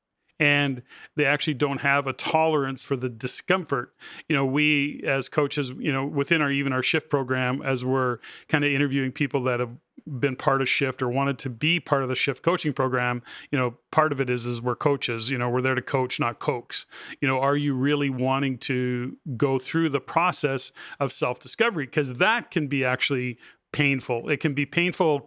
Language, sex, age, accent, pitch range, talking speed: English, male, 40-59, American, 130-150 Hz, 200 wpm